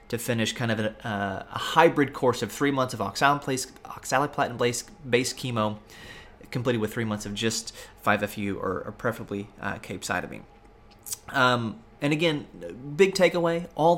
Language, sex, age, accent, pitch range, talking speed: English, male, 30-49, American, 105-135 Hz, 135 wpm